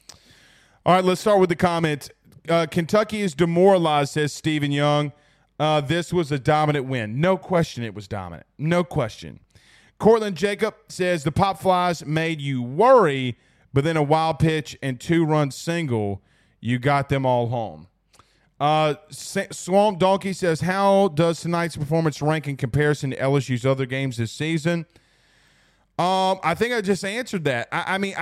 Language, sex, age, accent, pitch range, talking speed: English, male, 30-49, American, 145-185 Hz, 160 wpm